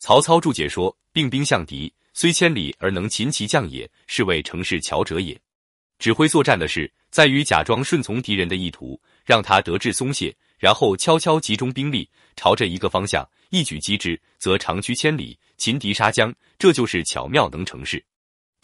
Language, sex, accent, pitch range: Chinese, male, native, 95-155 Hz